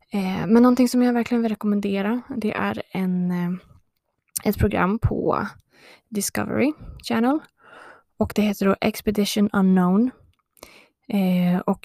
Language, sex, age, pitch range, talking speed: Swedish, female, 20-39, 190-220 Hz, 105 wpm